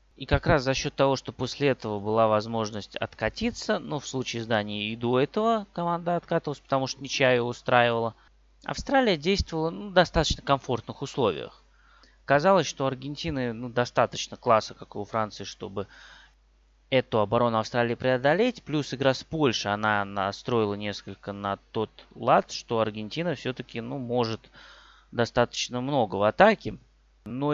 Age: 20-39